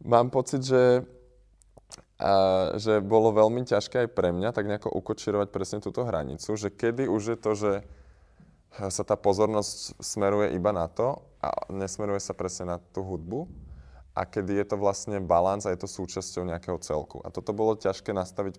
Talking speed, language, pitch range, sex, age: 175 wpm, Slovak, 90-110 Hz, male, 20-39